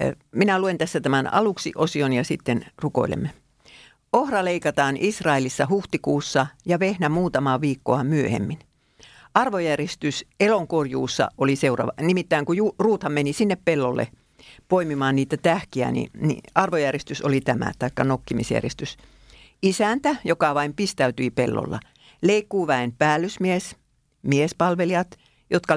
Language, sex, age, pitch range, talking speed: Finnish, female, 50-69, 135-185 Hz, 110 wpm